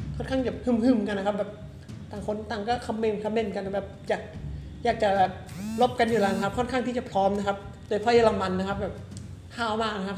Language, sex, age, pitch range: Thai, male, 20-39, 195-230 Hz